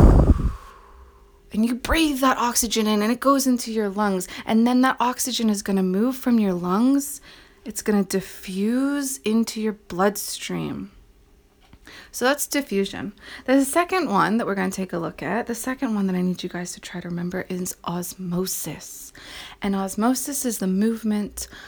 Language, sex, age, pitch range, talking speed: English, female, 20-39, 185-245 Hz, 175 wpm